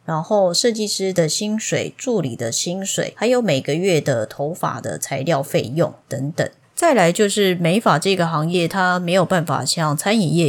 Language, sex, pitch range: Chinese, female, 150-195 Hz